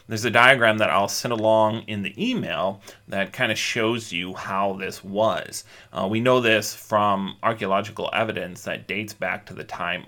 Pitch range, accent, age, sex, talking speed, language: 105-135 Hz, American, 30-49, male, 185 wpm, English